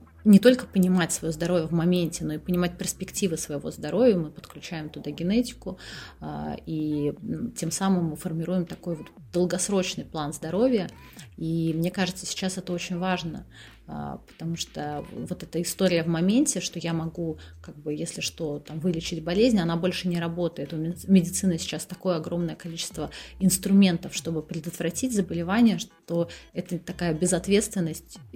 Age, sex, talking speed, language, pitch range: 30-49, female, 145 wpm, Russian, 165-190 Hz